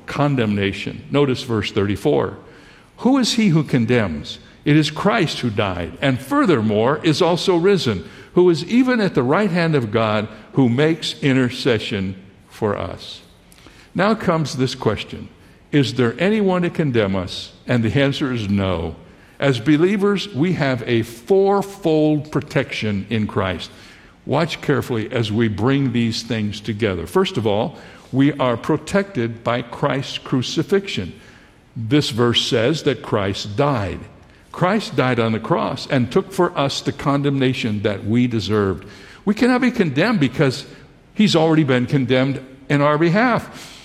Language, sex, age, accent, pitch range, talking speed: English, male, 60-79, American, 115-165 Hz, 145 wpm